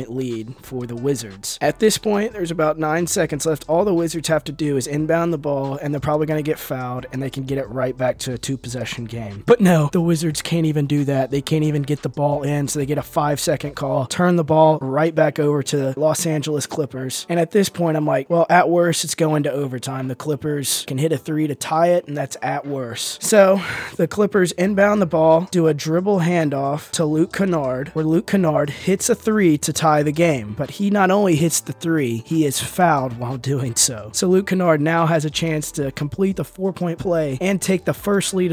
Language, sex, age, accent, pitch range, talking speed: English, male, 20-39, American, 135-165 Hz, 235 wpm